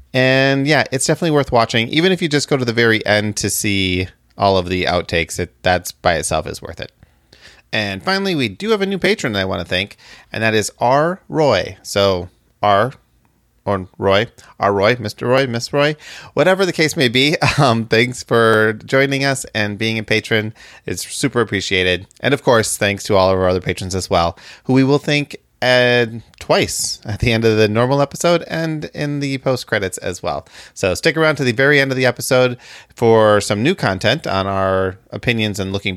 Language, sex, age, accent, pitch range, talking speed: English, male, 30-49, American, 95-135 Hz, 200 wpm